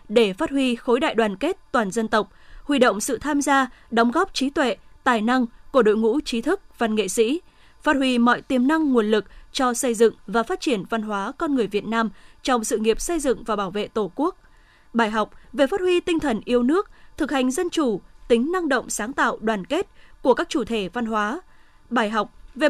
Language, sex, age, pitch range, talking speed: Vietnamese, female, 20-39, 225-300 Hz, 230 wpm